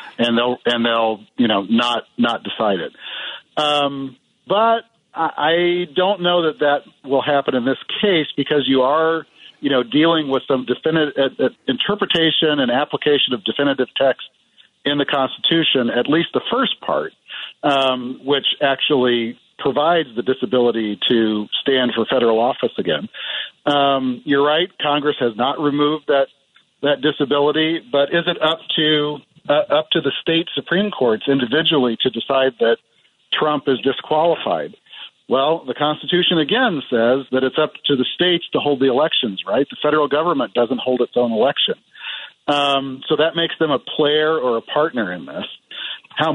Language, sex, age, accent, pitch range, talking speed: English, male, 50-69, American, 130-160 Hz, 165 wpm